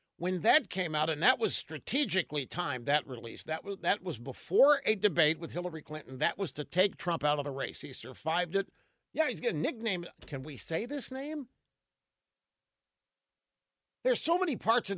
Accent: American